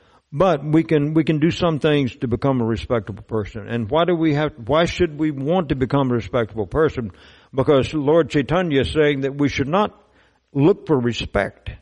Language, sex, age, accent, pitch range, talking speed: English, male, 60-79, American, 100-145 Hz, 200 wpm